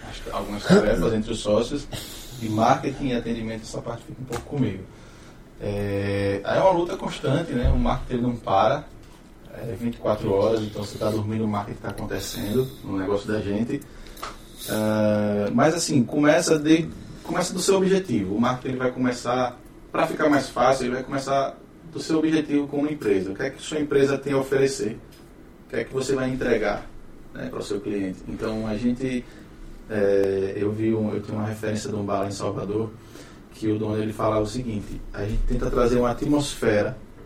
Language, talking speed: Portuguese, 190 wpm